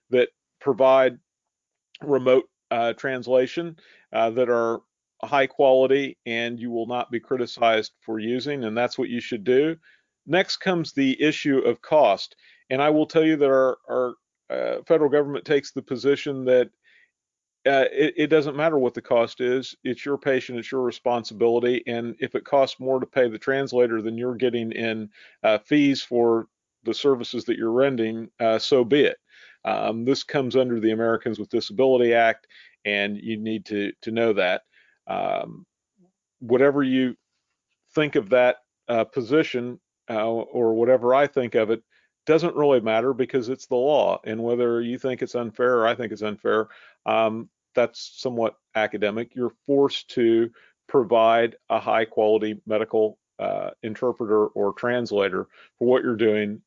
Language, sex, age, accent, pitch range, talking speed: English, male, 40-59, American, 115-135 Hz, 160 wpm